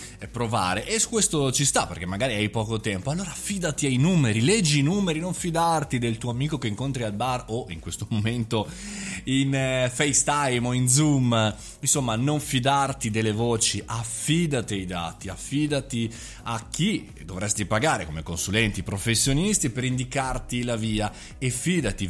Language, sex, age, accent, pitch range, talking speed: Italian, male, 20-39, native, 105-145 Hz, 160 wpm